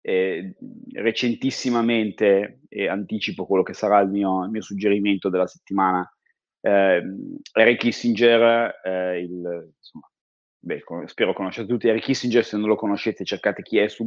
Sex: male